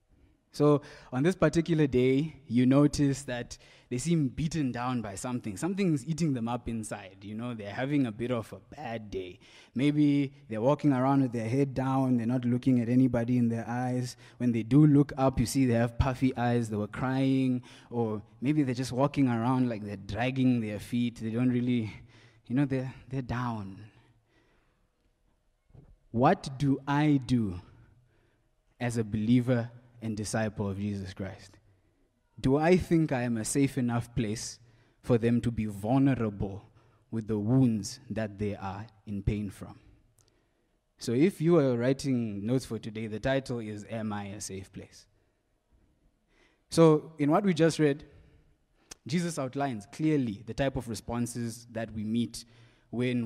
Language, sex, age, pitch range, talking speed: English, male, 20-39, 110-135 Hz, 165 wpm